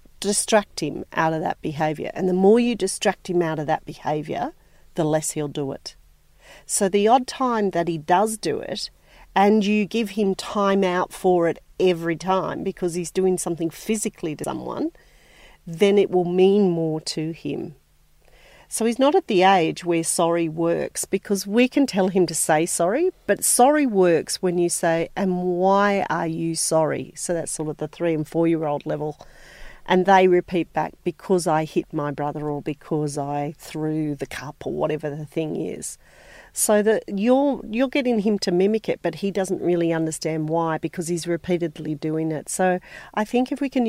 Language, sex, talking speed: English, female, 190 wpm